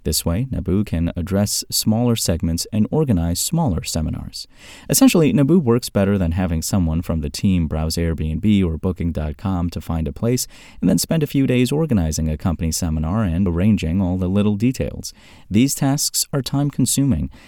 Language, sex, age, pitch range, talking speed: English, male, 30-49, 85-115 Hz, 170 wpm